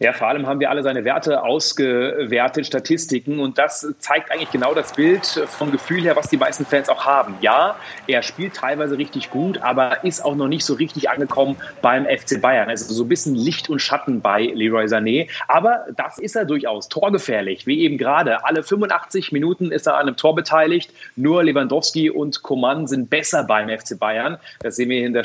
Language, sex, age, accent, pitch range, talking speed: German, male, 30-49, German, 135-185 Hz, 205 wpm